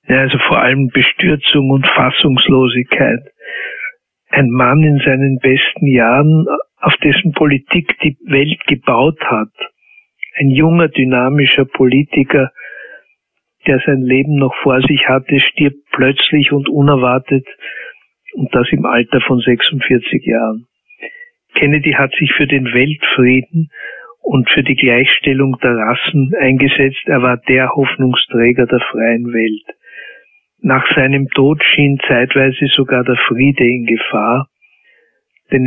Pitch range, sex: 125-150 Hz, male